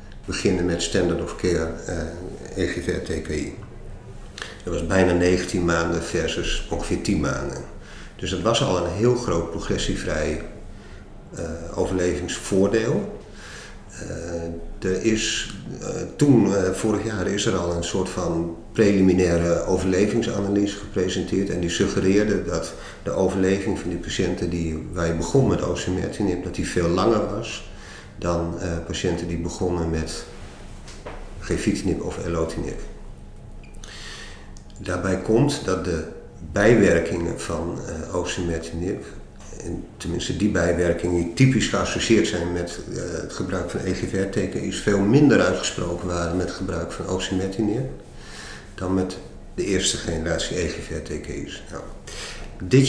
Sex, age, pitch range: male, 50-69, 85-100 Hz